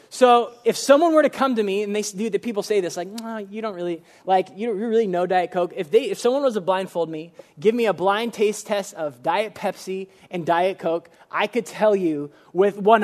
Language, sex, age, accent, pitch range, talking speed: English, male, 20-39, American, 180-225 Hz, 240 wpm